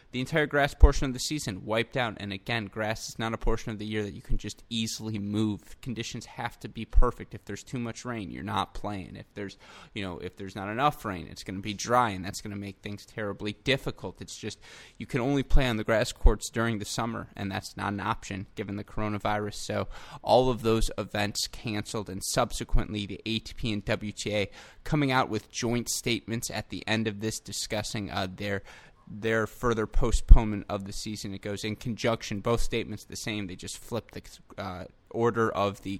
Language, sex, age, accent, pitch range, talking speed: English, male, 20-39, American, 100-115 Hz, 215 wpm